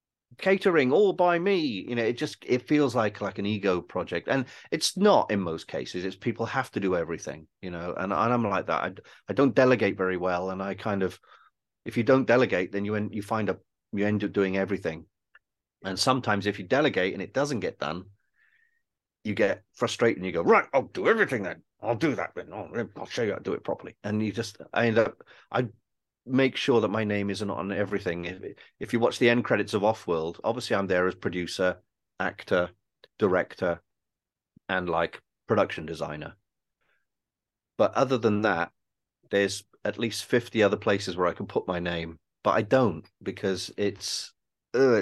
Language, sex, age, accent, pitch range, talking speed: English, male, 40-59, British, 95-120 Hz, 195 wpm